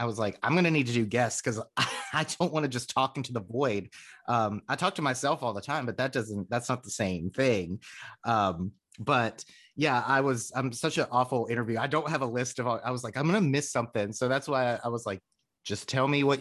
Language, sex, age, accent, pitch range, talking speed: English, male, 30-49, American, 105-140 Hz, 260 wpm